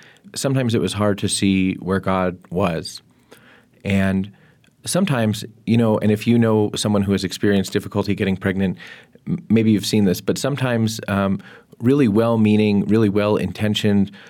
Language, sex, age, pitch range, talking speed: English, male, 30-49, 100-115 Hz, 145 wpm